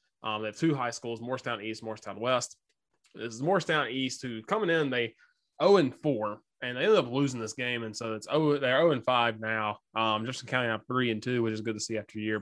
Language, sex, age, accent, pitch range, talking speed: English, male, 20-39, American, 110-135 Hz, 235 wpm